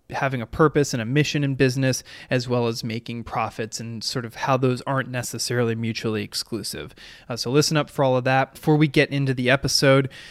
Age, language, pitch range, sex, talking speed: 20-39, English, 120-135 Hz, male, 210 wpm